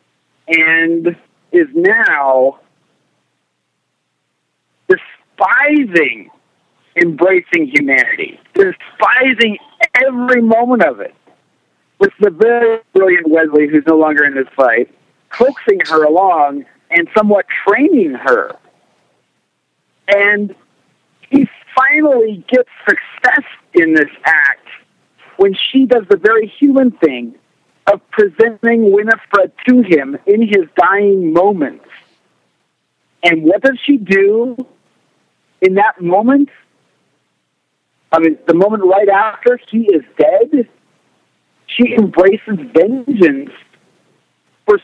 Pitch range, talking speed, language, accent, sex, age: 195-275 Hz, 100 wpm, English, American, male, 50-69